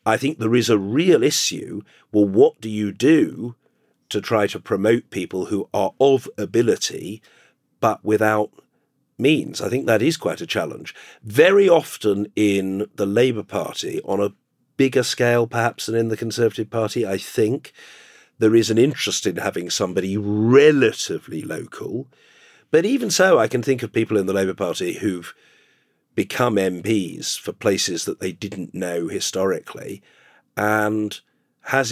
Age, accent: 50-69, British